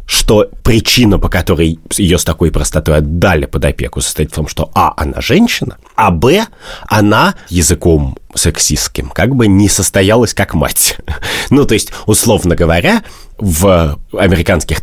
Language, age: Russian, 30-49